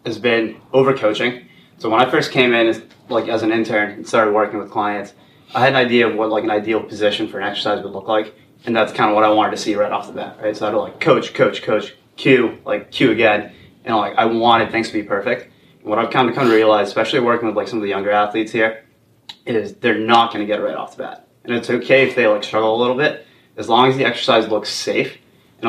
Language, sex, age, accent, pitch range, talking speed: English, male, 20-39, American, 105-115 Hz, 270 wpm